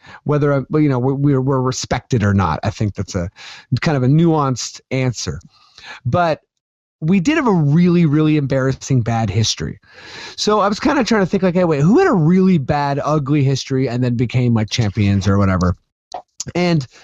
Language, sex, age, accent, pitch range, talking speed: English, male, 30-49, American, 130-185 Hz, 185 wpm